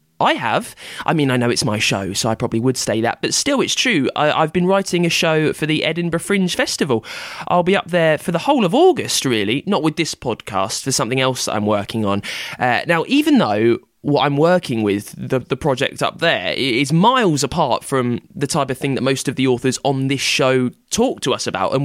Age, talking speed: 20-39, 235 wpm